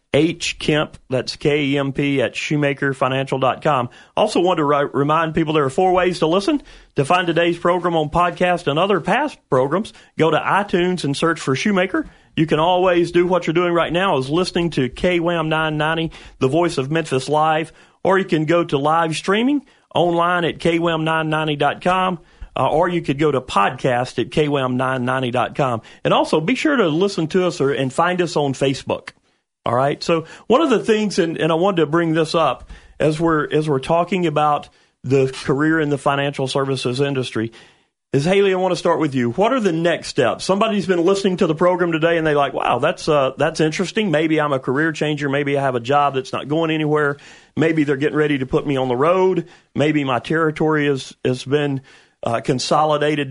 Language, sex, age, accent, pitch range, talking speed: English, male, 40-59, American, 140-175 Hz, 200 wpm